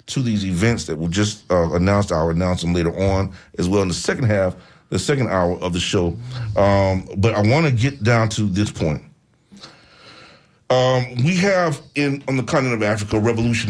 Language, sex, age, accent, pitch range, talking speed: English, male, 40-59, American, 90-105 Hz, 200 wpm